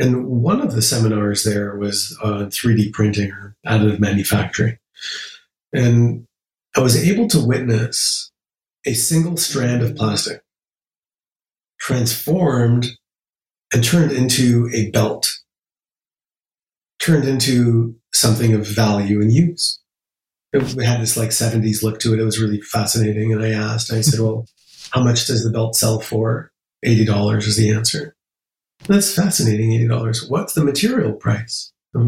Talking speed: 140 wpm